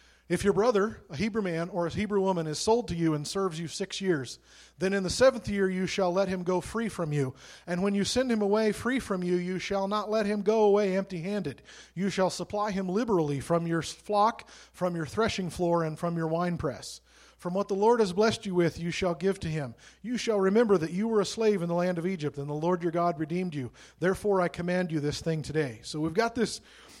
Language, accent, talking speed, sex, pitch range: English, American, 240 wpm, male, 155-200 Hz